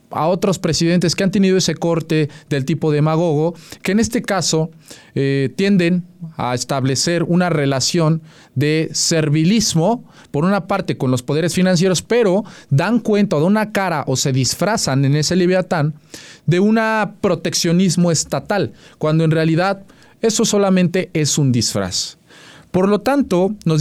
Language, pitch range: Spanish, 155-195 Hz